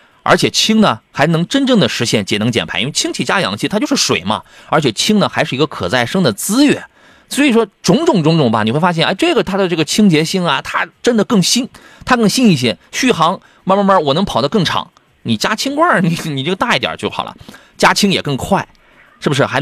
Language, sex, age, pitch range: Chinese, male, 30-49, 130-215 Hz